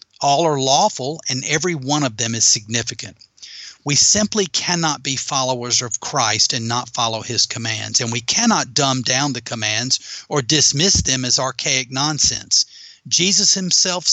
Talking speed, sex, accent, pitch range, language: 155 wpm, male, American, 120-155 Hz, English